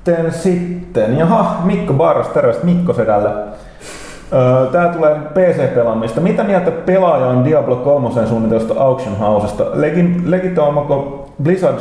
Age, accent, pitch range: 30-49, native, 110-150 Hz